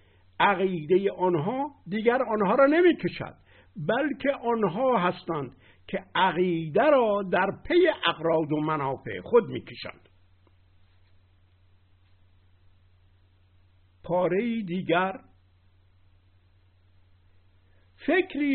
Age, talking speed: 60-79, 70 wpm